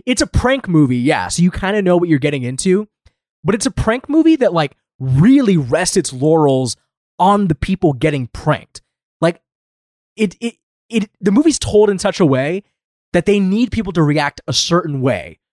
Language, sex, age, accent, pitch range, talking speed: English, male, 20-39, American, 135-185 Hz, 195 wpm